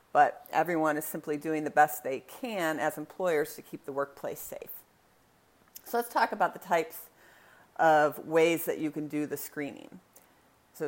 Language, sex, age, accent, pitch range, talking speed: English, female, 40-59, American, 155-185 Hz, 170 wpm